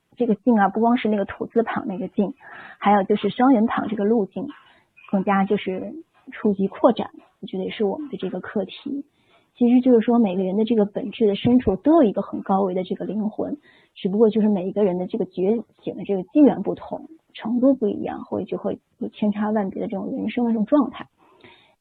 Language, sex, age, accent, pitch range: Chinese, female, 20-39, native, 205-260 Hz